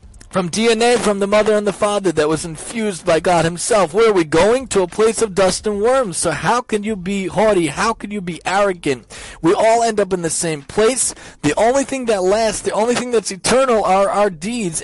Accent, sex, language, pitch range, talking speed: American, male, English, 175-215 Hz, 230 wpm